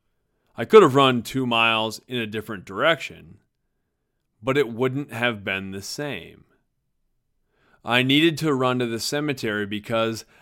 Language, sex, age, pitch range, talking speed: English, male, 40-59, 110-135 Hz, 145 wpm